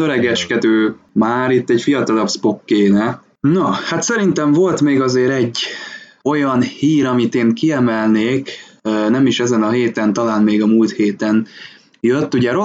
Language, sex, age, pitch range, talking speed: Hungarian, male, 20-39, 105-125 Hz, 145 wpm